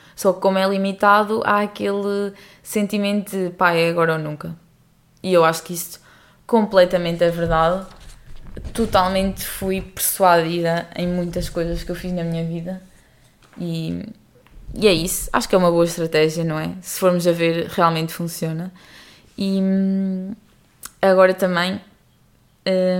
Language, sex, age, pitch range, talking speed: English, female, 20-39, 170-190 Hz, 145 wpm